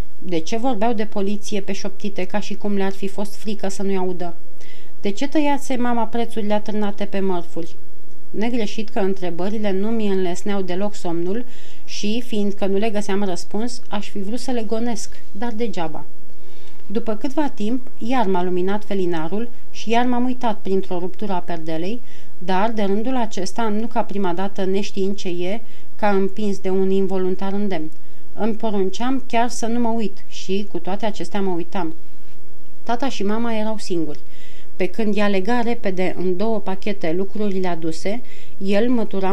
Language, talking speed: Romanian, 170 wpm